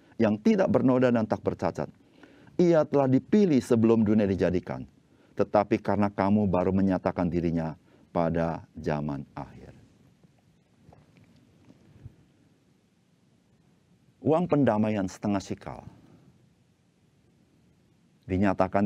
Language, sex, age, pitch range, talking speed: Indonesian, male, 50-69, 90-125 Hz, 85 wpm